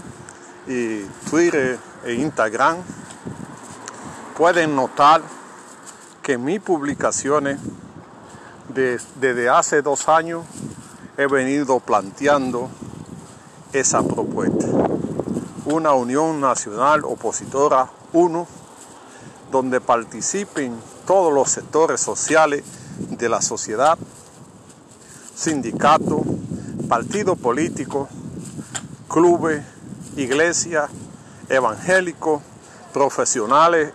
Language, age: Spanish, 50-69